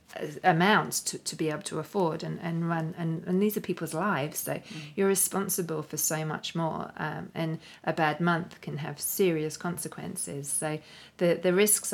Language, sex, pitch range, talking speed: English, female, 155-170 Hz, 180 wpm